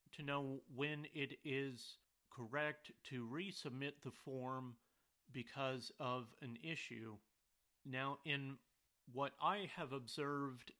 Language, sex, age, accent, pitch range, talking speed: English, male, 40-59, American, 125-150 Hz, 110 wpm